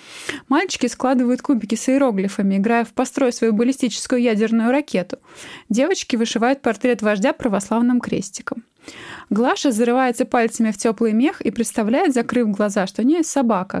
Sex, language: female, Russian